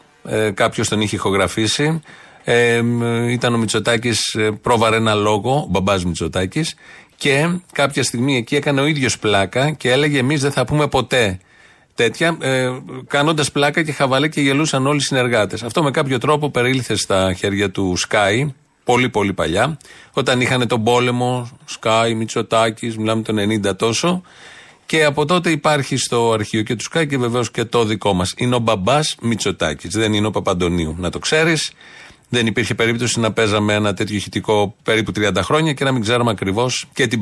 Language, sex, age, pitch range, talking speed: Greek, male, 30-49, 110-150 Hz, 170 wpm